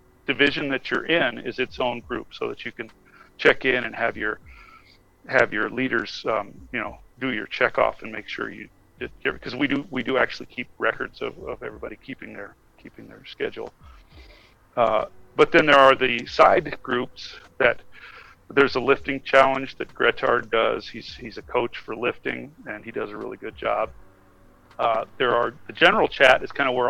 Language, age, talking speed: English, 40-59, 190 wpm